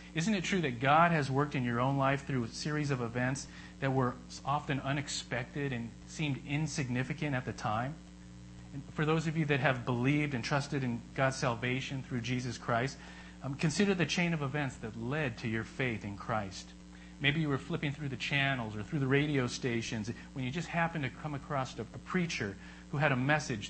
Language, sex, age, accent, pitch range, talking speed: English, male, 40-59, American, 100-145 Hz, 205 wpm